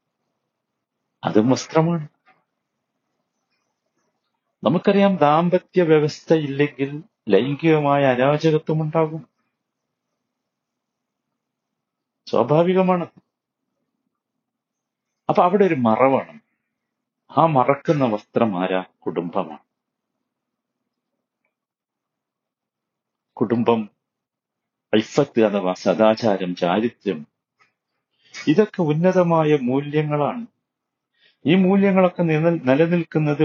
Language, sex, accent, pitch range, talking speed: Malayalam, male, native, 125-180 Hz, 50 wpm